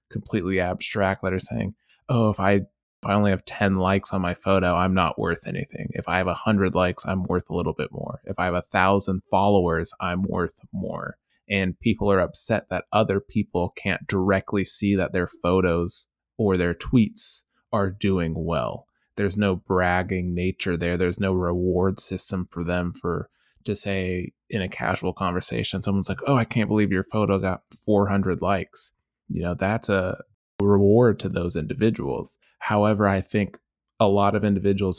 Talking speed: 175 wpm